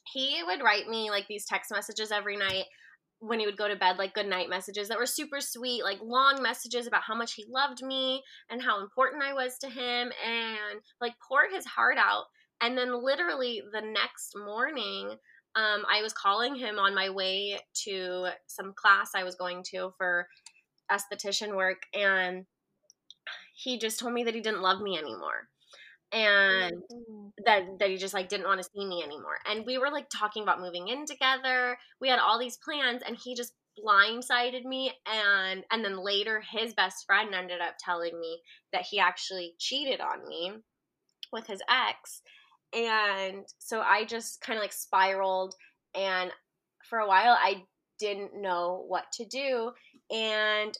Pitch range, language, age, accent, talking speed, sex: 195-240 Hz, English, 20-39, American, 175 wpm, female